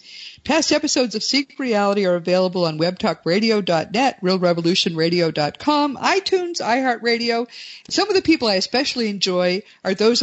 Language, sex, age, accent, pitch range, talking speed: English, female, 50-69, American, 175-245 Hz, 125 wpm